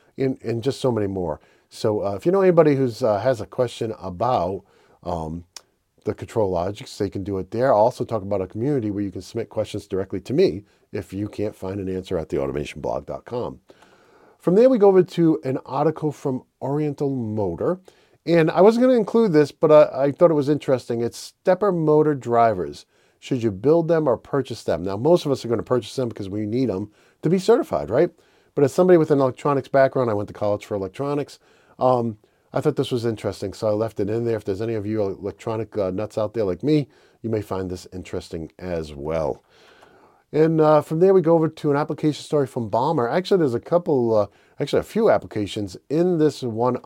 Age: 40-59